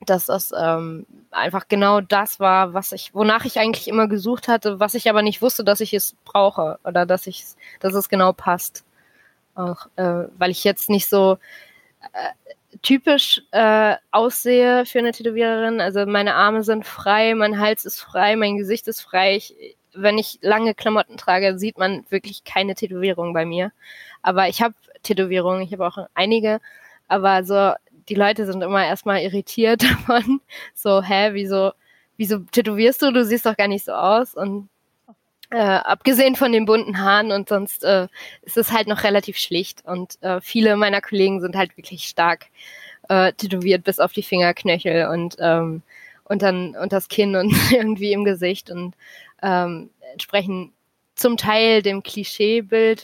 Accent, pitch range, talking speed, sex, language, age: German, 190-220 Hz, 170 wpm, female, German, 20-39